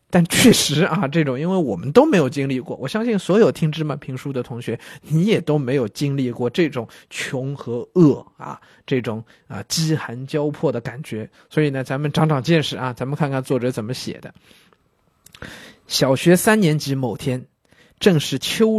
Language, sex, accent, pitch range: Chinese, male, native, 135-185 Hz